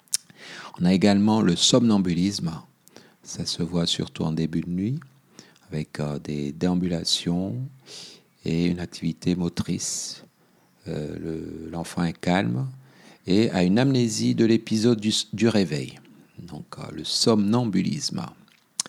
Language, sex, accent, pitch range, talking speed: French, male, French, 80-95 Hz, 125 wpm